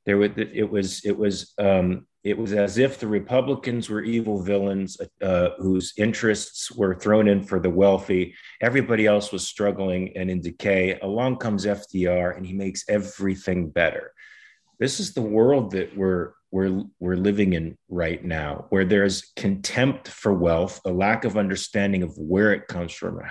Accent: American